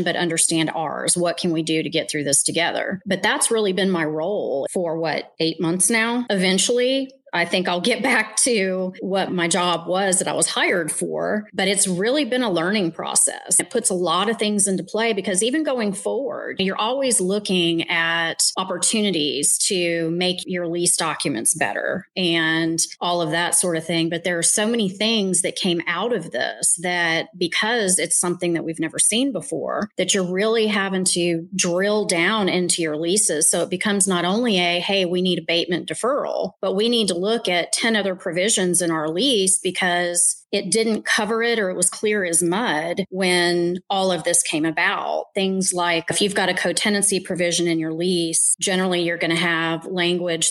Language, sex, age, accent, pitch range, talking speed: English, female, 30-49, American, 170-195 Hz, 195 wpm